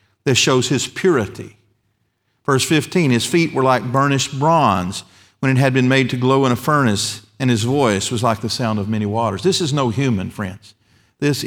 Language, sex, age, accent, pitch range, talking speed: English, male, 50-69, American, 110-135 Hz, 200 wpm